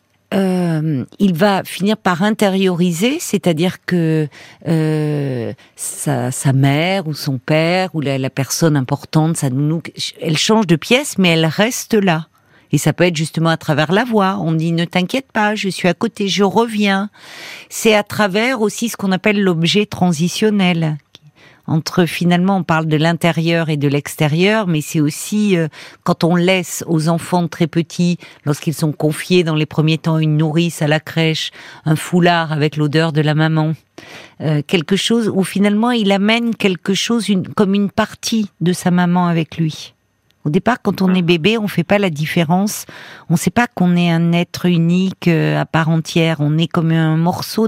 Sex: female